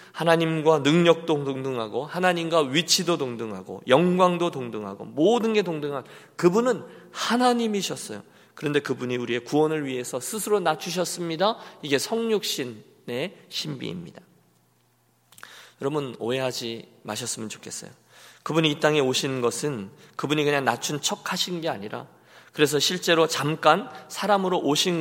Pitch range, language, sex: 130-180 Hz, Korean, male